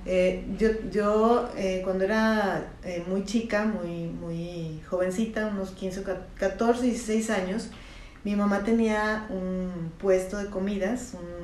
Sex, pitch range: female, 190-230 Hz